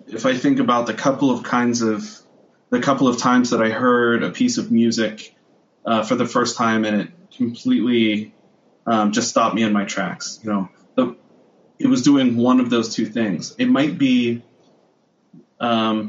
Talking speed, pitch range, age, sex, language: 185 wpm, 110-130 Hz, 20-39, male, English